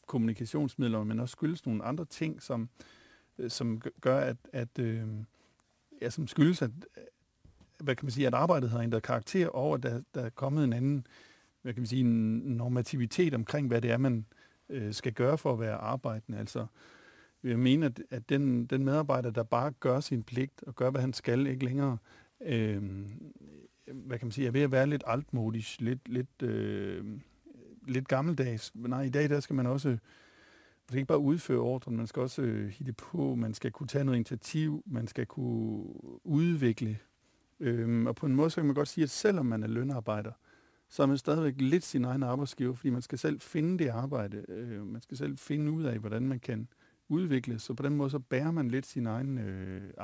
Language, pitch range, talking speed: Danish, 115-140 Hz, 205 wpm